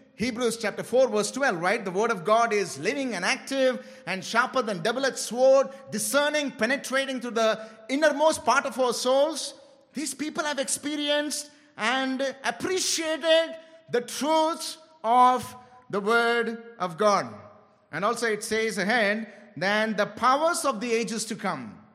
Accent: Indian